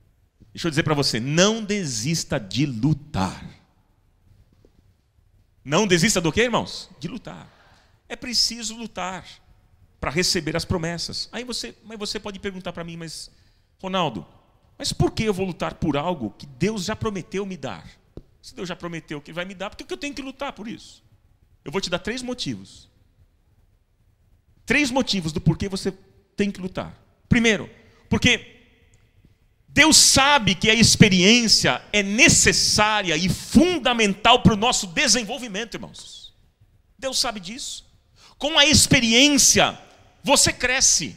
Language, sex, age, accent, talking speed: Portuguese, male, 40-59, Brazilian, 145 wpm